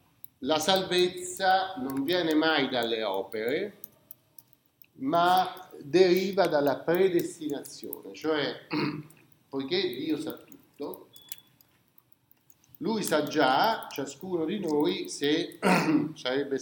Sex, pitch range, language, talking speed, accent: male, 135-190 Hz, Italian, 85 wpm, native